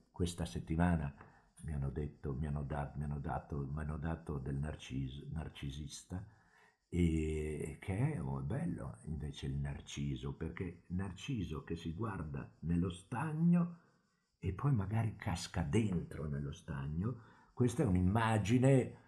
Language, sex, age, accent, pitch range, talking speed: Italian, male, 50-69, native, 75-110 Hz, 135 wpm